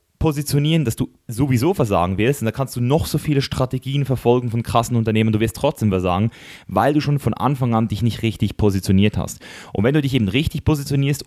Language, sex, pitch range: German, male, 105-135 Hz